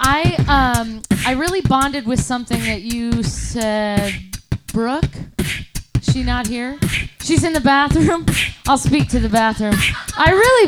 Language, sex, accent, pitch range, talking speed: English, female, American, 205-255 Hz, 145 wpm